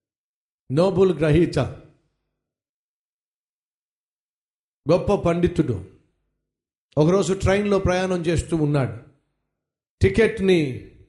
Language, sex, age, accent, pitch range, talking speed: Telugu, male, 50-69, native, 145-195 Hz, 55 wpm